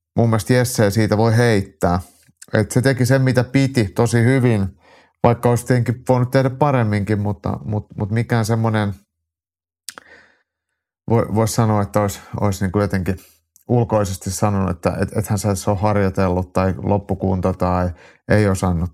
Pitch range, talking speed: 95-115 Hz, 145 wpm